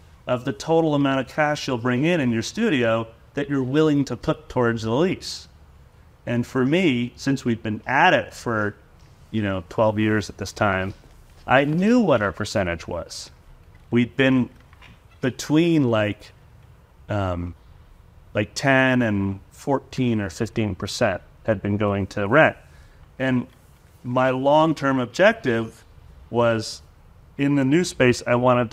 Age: 30-49